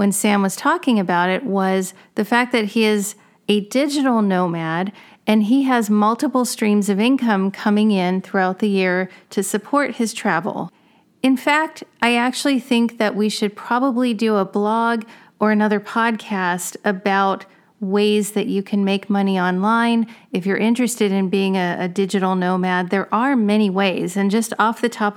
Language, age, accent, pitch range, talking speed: English, 40-59, American, 190-220 Hz, 170 wpm